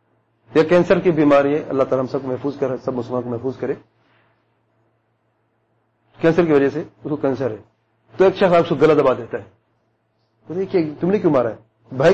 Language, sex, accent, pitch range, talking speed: English, male, Indian, 115-170 Hz, 210 wpm